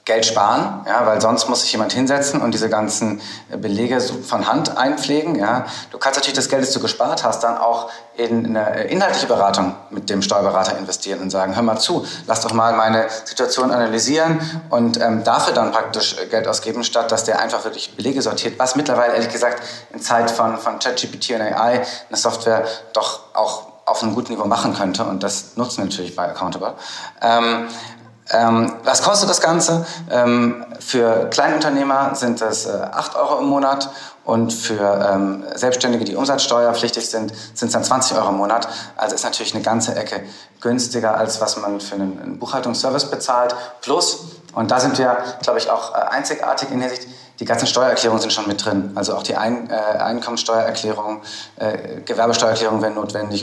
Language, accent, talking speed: German, German, 180 wpm